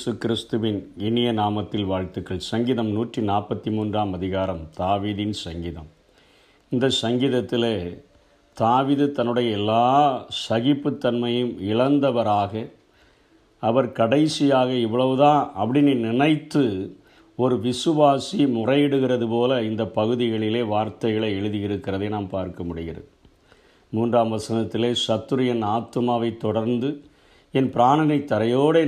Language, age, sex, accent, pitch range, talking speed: Tamil, 50-69, male, native, 105-135 Hz, 85 wpm